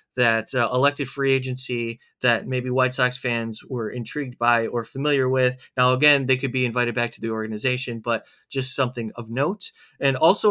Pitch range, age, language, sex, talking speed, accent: 125-160 Hz, 30-49, English, male, 190 wpm, American